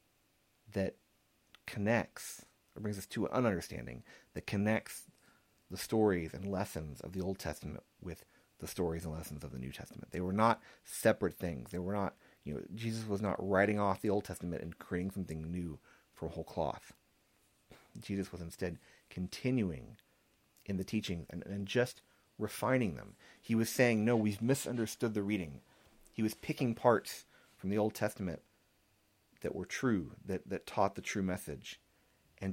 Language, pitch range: English, 85-105 Hz